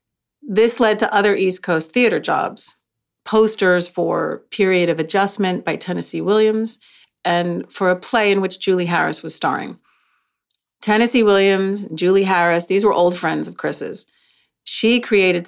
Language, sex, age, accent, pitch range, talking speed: English, female, 40-59, American, 170-215 Hz, 145 wpm